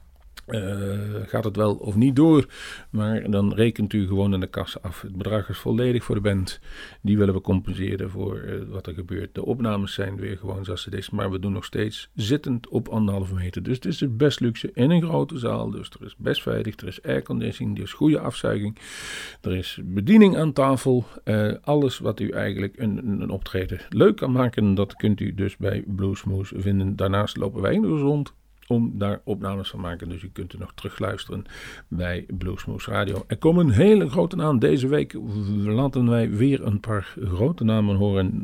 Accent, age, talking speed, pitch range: Dutch, 50-69, 200 wpm, 95-120 Hz